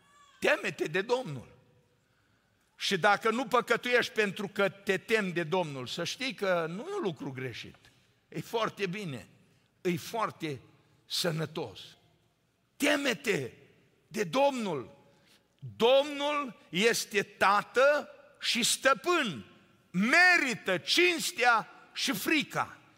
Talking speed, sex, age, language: 105 wpm, male, 50-69, Romanian